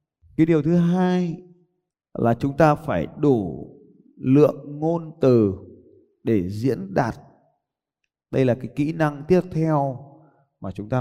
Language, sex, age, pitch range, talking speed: Vietnamese, male, 20-39, 115-160 Hz, 135 wpm